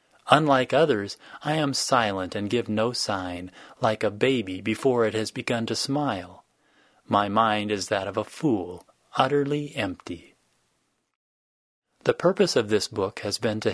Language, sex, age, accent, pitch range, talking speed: English, male, 30-49, American, 100-130 Hz, 155 wpm